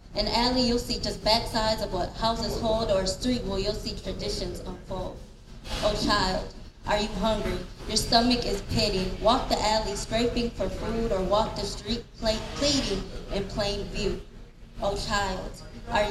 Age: 20-39